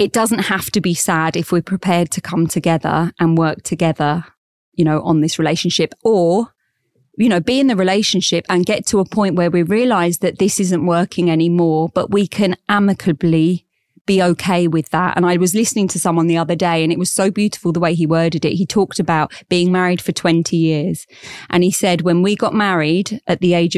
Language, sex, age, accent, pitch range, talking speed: English, female, 20-39, British, 165-190 Hz, 215 wpm